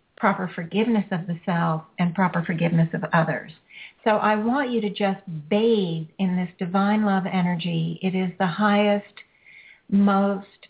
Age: 50-69